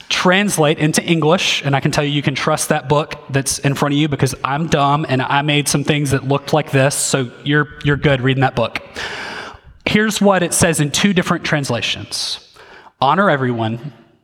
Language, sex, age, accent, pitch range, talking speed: English, male, 30-49, American, 125-155 Hz, 200 wpm